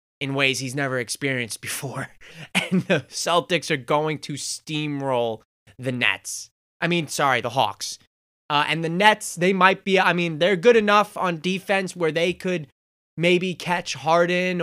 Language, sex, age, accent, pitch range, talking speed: English, male, 20-39, American, 140-180 Hz, 165 wpm